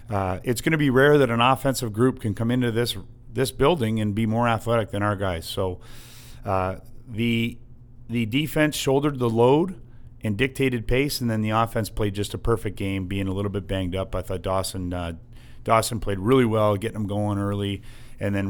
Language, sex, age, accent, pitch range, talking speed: English, male, 40-59, American, 100-120 Hz, 205 wpm